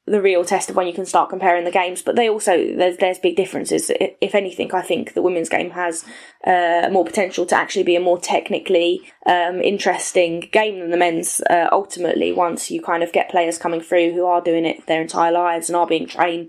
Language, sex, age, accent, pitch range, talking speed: English, female, 10-29, British, 170-190 Hz, 225 wpm